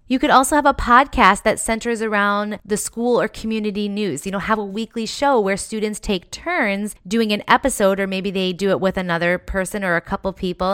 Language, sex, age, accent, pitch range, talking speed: English, female, 20-39, American, 185-220 Hz, 220 wpm